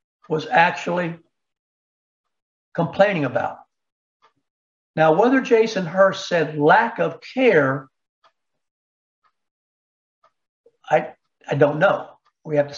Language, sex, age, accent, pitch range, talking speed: English, male, 60-79, American, 140-190 Hz, 90 wpm